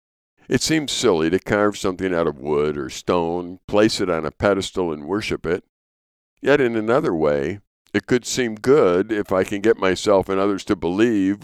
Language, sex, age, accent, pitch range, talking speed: English, male, 60-79, American, 80-105 Hz, 190 wpm